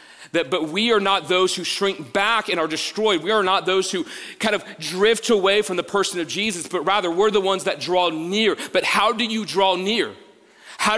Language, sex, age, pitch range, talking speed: English, male, 30-49, 160-220 Hz, 225 wpm